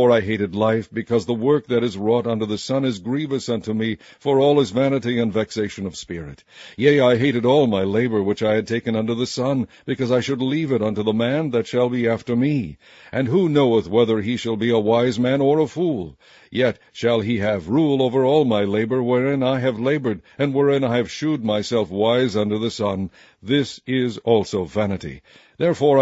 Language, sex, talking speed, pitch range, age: English, male, 210 wpm, 110-135 Hz, 60-79